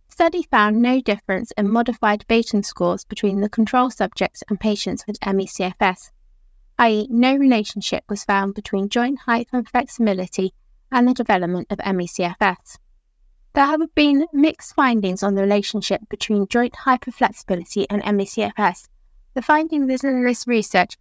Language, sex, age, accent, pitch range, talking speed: English, female, 30-49, British, 205-245 Hz, 145 wpm